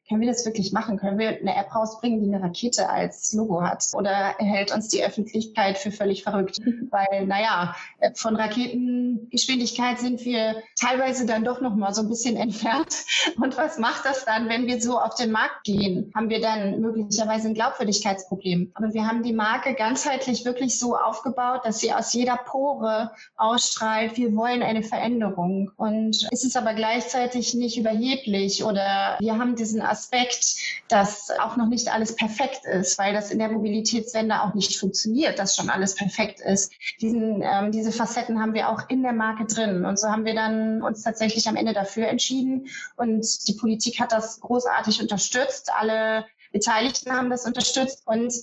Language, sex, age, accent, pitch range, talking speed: German, female, 30-49, German, 205-240 Hz, 175 wpm